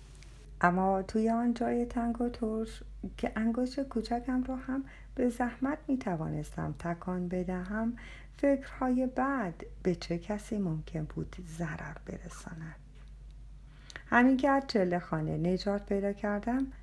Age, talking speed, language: 50-69, 120 wpm, Persian